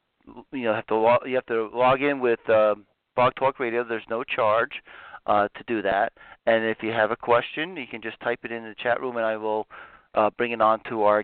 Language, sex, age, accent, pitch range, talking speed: English, male, 40-59, American, 110-125 Hz, 245 wpm